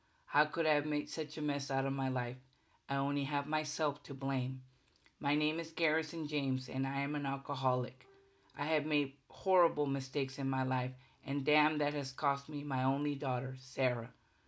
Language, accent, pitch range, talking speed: English, American, 135-160 Hz, 190 wpm